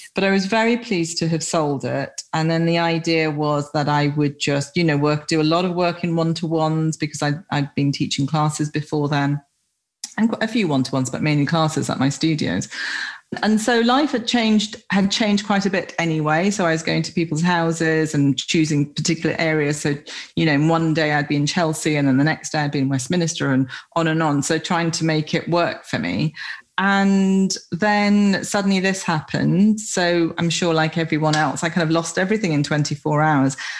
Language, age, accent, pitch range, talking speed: English, 40-59, British, 150-190 Hz, 210 wpm